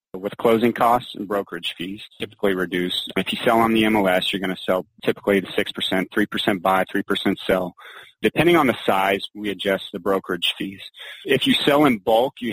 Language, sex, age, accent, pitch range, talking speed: English, male, 30-49, American, 95-110 Hz, 190 wpm